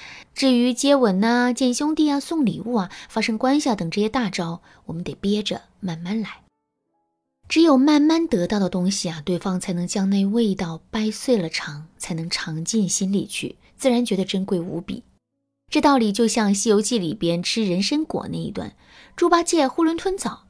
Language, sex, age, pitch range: Chinese, female, 20-39, 180-260 Hz